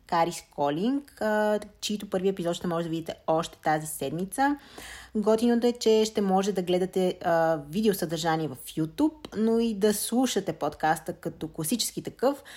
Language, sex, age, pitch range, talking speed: Bulgarian, female, 20-39, 165-200 Hz, 145 wpm